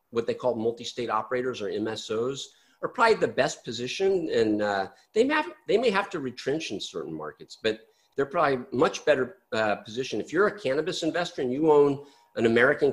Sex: male